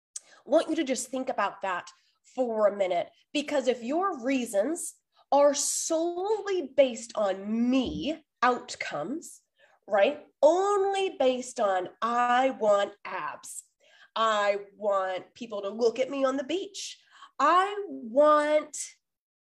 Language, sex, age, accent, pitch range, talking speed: English, female, 20-39, American, 225-320 Hz, 125 wpm